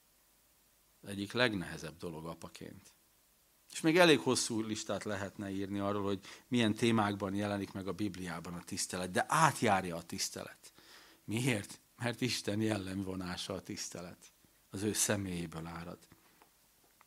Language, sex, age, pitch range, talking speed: Hungarian, male, 50-69, 95-120 Hz, 125 wpm